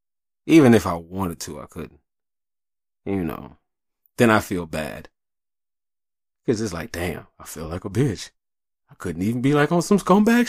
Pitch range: 85-110 Hz